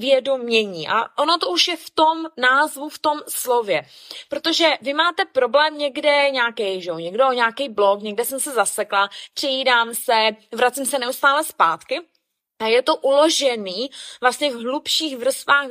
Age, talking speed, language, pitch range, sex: 20-39, 155 wpm, Czech, 240-310 Hz, female